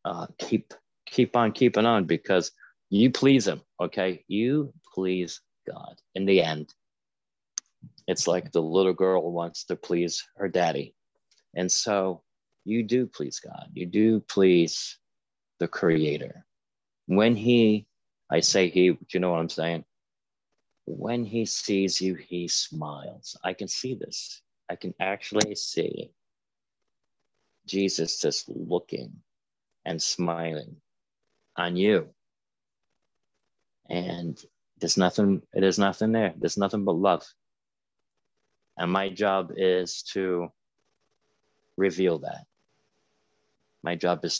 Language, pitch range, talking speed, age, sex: English, 85-100 Hz, 125 wpm, 40-59, male